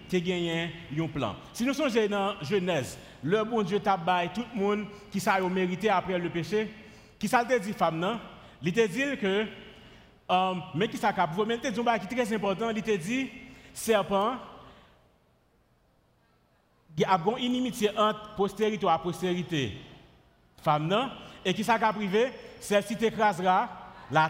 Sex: male